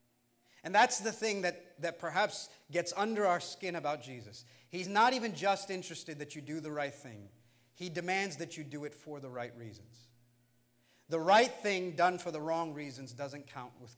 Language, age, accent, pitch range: English, 40-59, American, 125-210 Hz